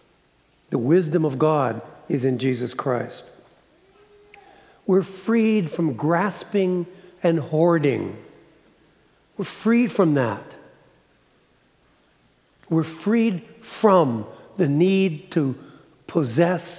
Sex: male